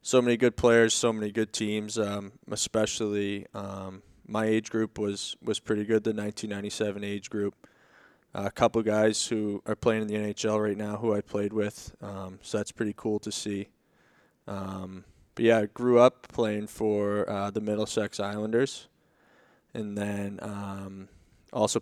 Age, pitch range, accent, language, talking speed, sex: 20-39, 100-110 Hz, American, English, 170 wpm, male